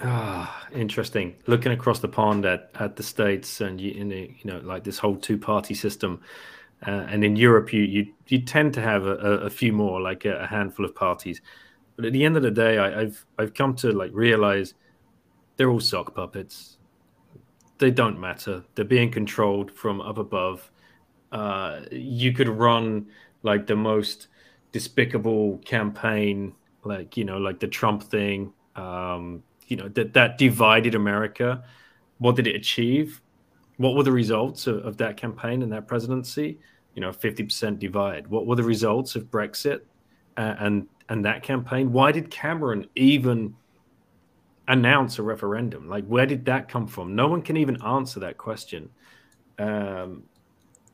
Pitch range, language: 100-125 Hz, English